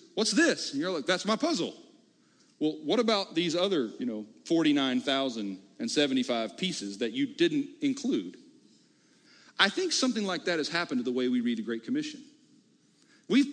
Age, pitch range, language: 40-59, 175-270 Hz, English